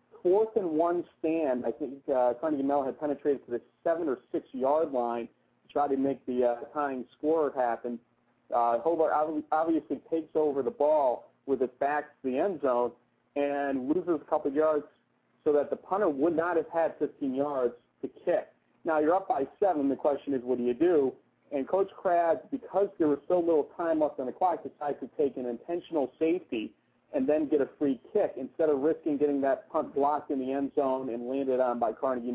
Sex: male